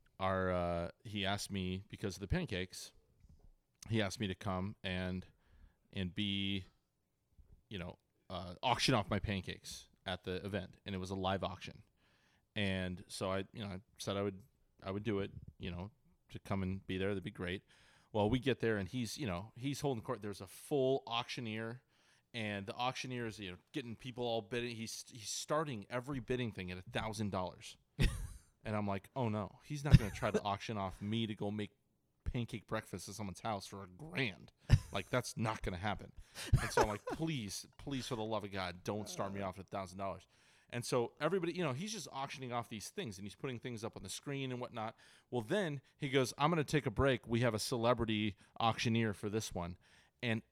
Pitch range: 95-120 Hz